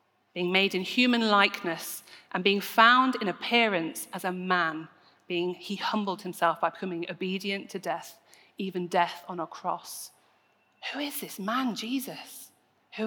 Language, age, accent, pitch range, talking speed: English, 30-49, British, 185-235 Hz, 150 wpm